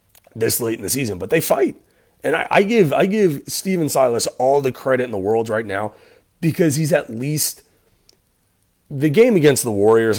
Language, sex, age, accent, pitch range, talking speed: English, male, 30-49, American, 110-140 Hz, 185 wpm